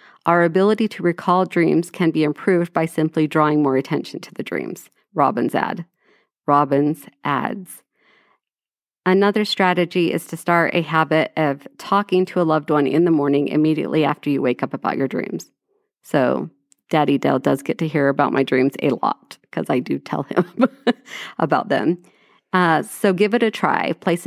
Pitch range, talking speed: 155-190 Hz, 175 wpm